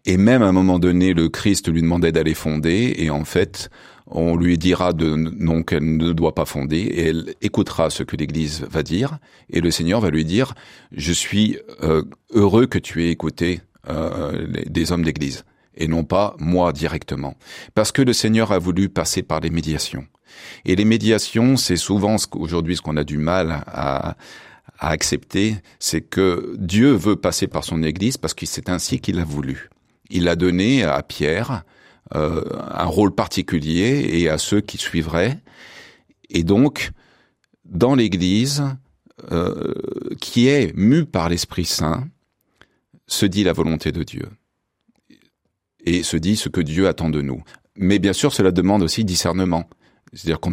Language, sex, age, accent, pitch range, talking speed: French, male, 40-59, French, 80-100 Hz, 175 wpm